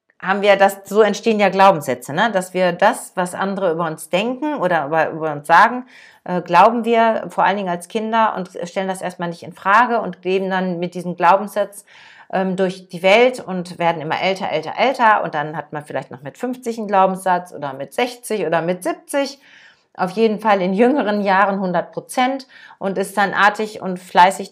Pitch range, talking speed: 170-210 Hz, 195 wpm